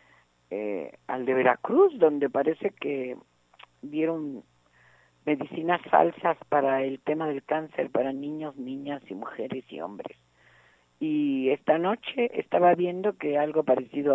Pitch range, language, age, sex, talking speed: 130-180 Hz, Spanish, 50-69, female, 125 wpm